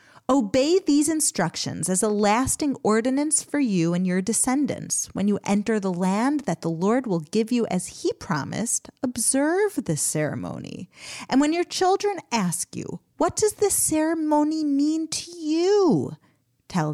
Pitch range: 190-300 Hz